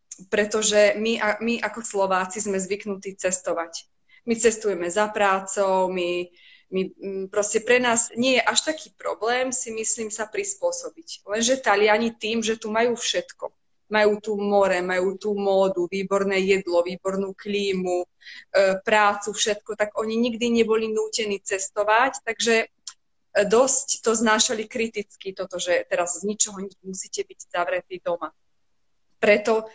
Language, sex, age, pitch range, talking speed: Slovak, female, 20-39, 190-220 Hz, 135 wpm